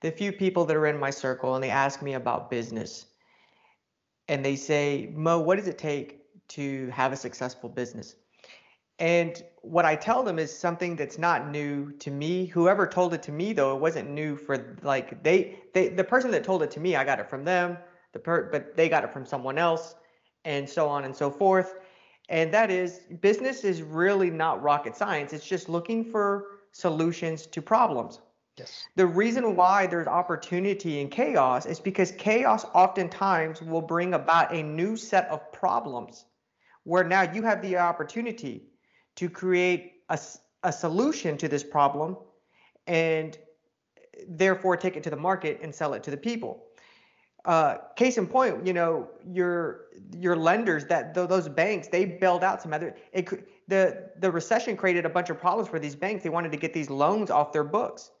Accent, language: American, English